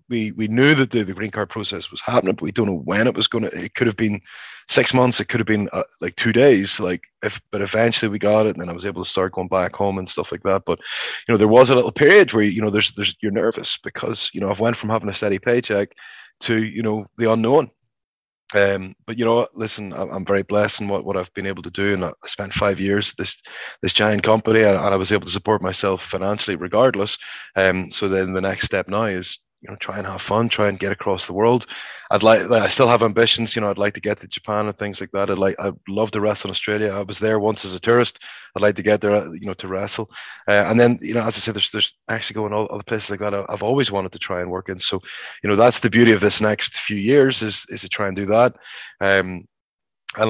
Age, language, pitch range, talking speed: 20-39, English, 100-120 Hz, 270 wpm